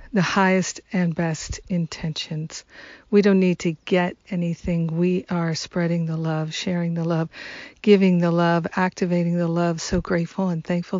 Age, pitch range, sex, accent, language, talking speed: 50-69, 170-190 Hz, female, American, English, 160 wpm